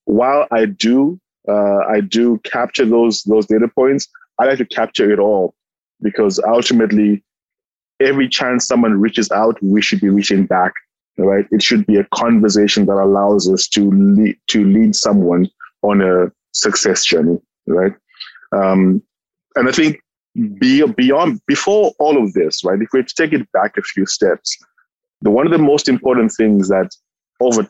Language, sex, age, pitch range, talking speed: English, male, 20-39, 100-130 Hz, 165 wpm